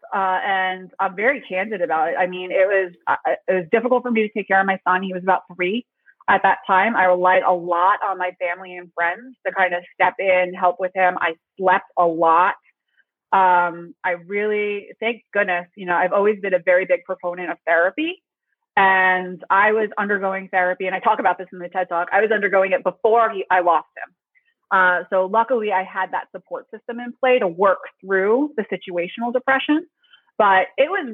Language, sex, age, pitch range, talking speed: English, female, 30-49, 185-225 Hz, 210 wpm